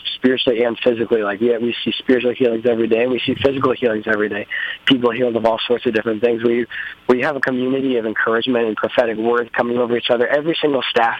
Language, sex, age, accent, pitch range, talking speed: English, male, 20-39, American, 110-120 Hz, 235 wpm